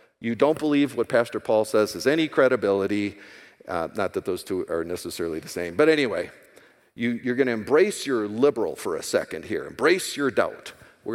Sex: male